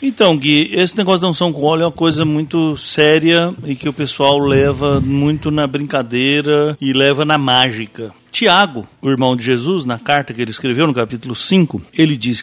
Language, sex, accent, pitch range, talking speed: English, male, Brazilian, 130-185 Hz, 195 wpm